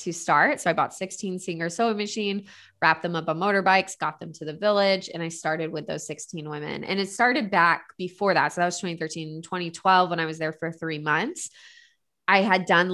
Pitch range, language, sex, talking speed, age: 165-200 Hz, English, female, 220 wpm, 20-39